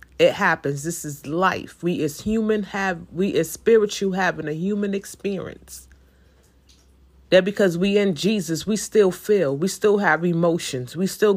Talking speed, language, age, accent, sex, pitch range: 160 wpm, English, 30-49, American, female, 160-210 Hz